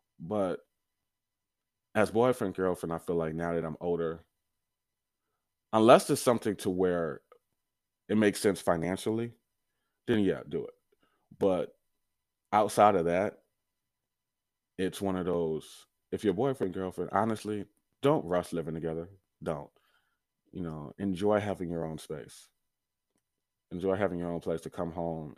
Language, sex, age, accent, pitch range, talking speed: English, male, 20-39, American, 85-110 Hz, 135 wpm